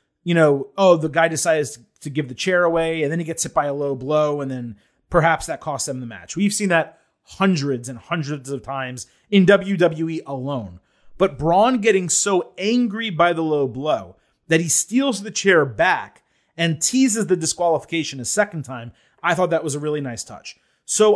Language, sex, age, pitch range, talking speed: English, male, 30-49, 140-190 Hz, 200 wpm